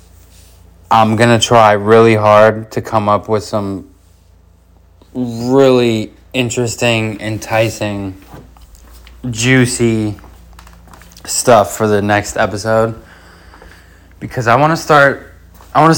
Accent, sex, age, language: American, male, 20-39, English